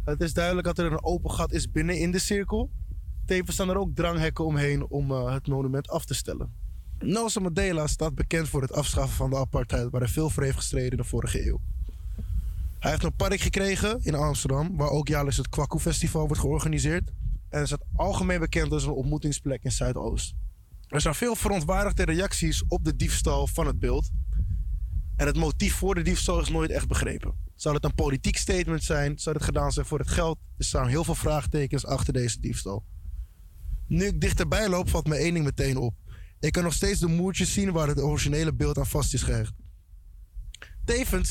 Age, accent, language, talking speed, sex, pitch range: 20-39, Dutch, Dutch, 200 wpm, male, 120-165 Hz